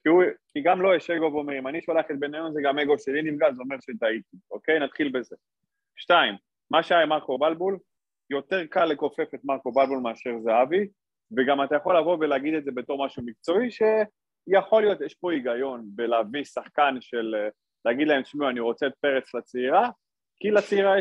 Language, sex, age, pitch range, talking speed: Hebrew, male, 30-49, 115-170 Hz, 205 wpm